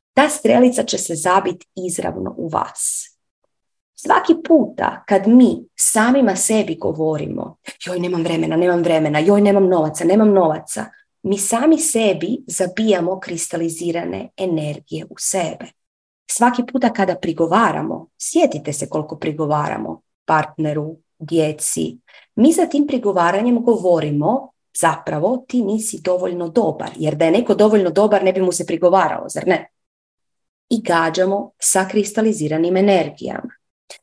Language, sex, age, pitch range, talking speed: Croatian, female, 30-49, 170-240 Hz, 125 wpm